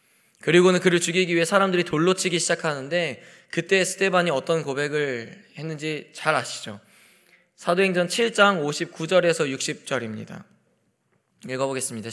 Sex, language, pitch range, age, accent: male, Korean, 150-220 Hz, 20-39, native